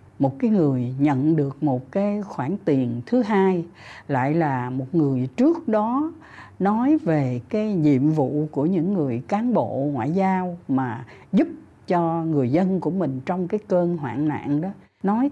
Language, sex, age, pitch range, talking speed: Vietnamese, female, 60-79, 135-195 Hz, 170 wpm